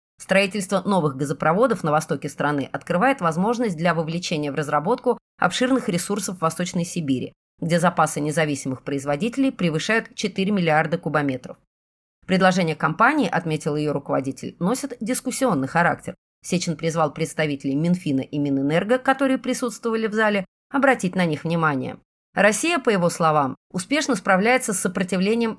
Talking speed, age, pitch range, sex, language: 130 wpm, 30-49, 155-195 Hz, female, Russian